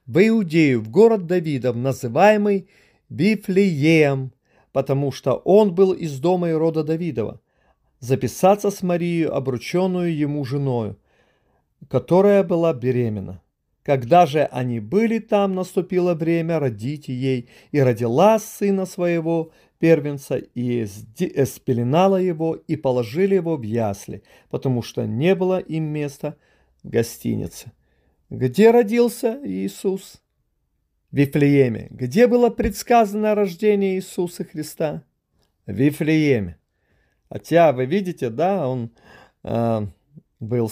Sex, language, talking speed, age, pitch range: male, Russian, 110 wpm, 40-59, 125-185 Hz